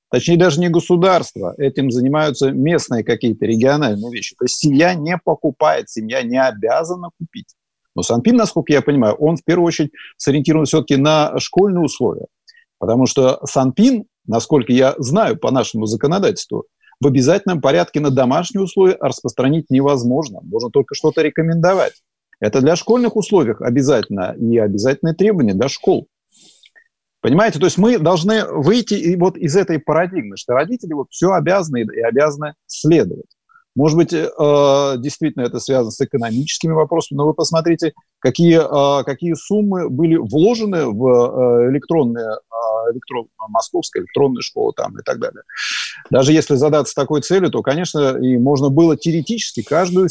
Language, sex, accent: Russian, male, native